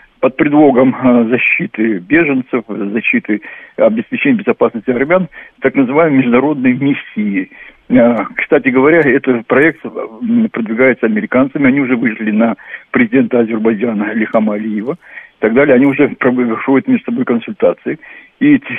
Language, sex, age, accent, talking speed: Russian, male, 60-79, native, 115 wpm